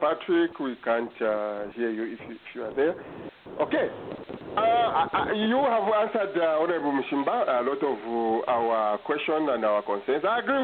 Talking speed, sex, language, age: 180 wpm, male, English, 50-69